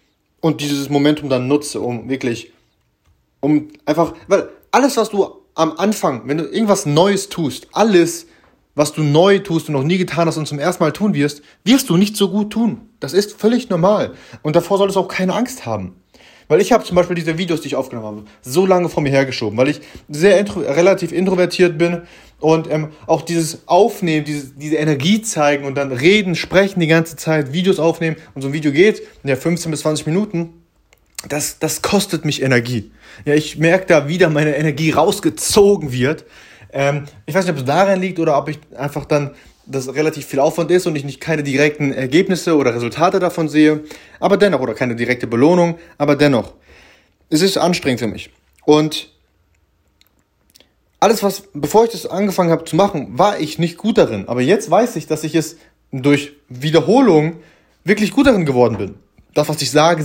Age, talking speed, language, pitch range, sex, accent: 30-49, 195 wpm, German, 140-180 Hz, male, German